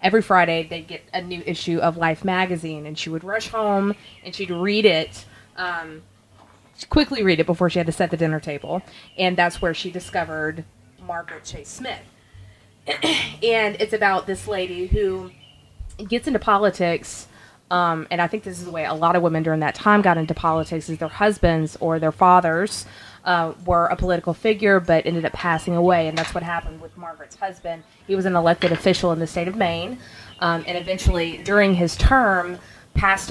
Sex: female